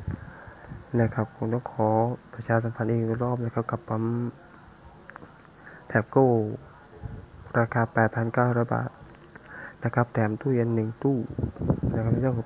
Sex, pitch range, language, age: male, 115-125 Hz, Thai, 20-39